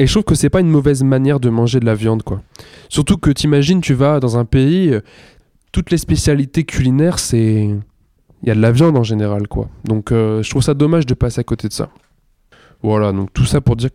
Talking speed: 235 wpm